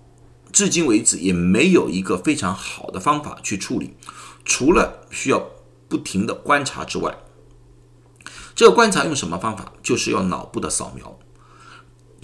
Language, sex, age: Chinese, male, 50-69